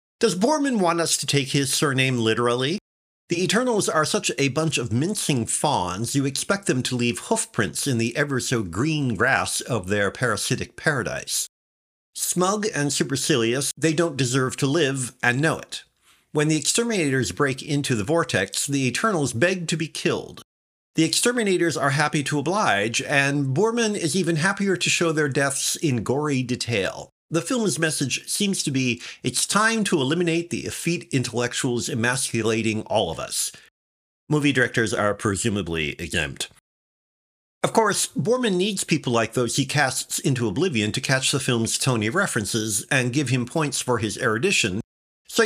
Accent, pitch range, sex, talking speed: American, 120-170 Hz, male, 160 wpm